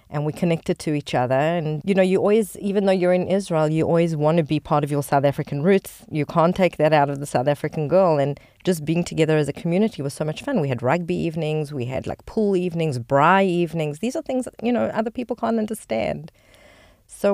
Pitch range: 140-180 Hz